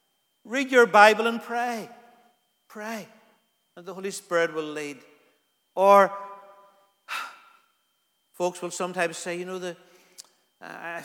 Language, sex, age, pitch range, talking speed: English, male, 50-69, 165-215 Hz, 110 wpm